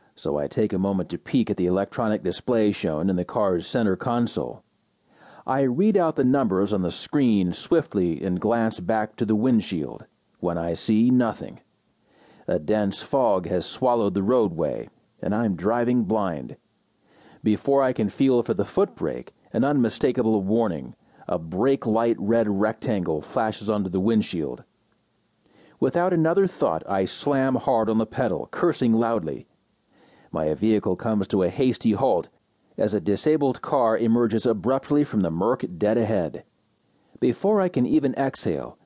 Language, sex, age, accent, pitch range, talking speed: English, male, 40-59, American, 100-130 Hz, 155 wpm